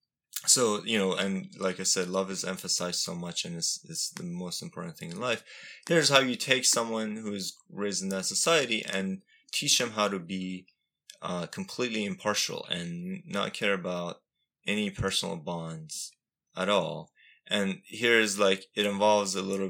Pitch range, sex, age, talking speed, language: 90-115 Hz, male, 20-39, 175 wpm, English